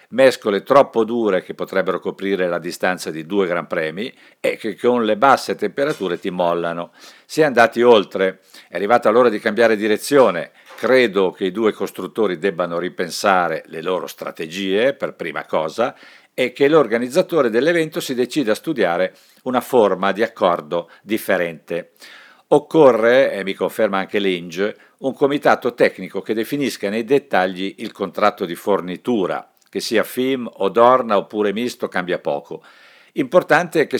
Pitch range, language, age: 95-130 Hz, Italian, 50-69